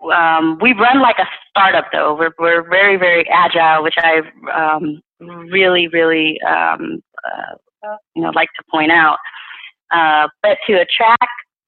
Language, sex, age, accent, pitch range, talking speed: English, female, 30-49, American, 160-195 Hz, 150 wpm